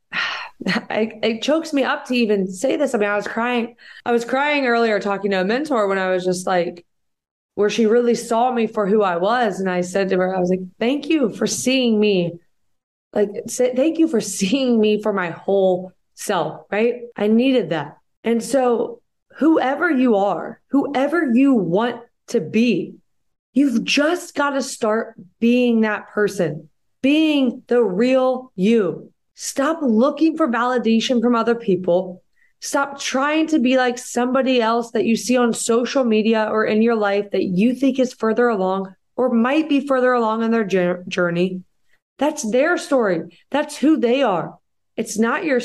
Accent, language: American, English